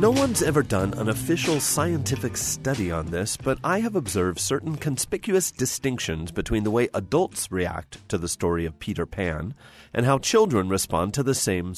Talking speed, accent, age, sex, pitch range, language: 180 wpm, American, 30-49, male, 95-145 Hz, English